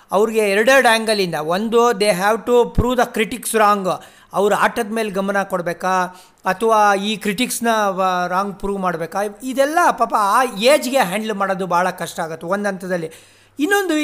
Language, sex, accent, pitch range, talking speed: Kannada, male, native, 195-255 Hz, 150 wpm